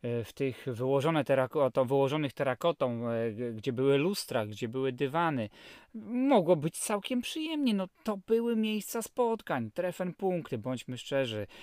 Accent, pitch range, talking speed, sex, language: native, 130-175 Hz, 130 wpm, male, Polish